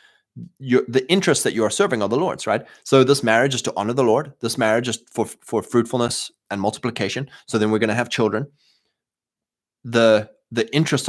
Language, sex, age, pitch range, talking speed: English, male, 20-39, 110-130 Hz, 200 wpm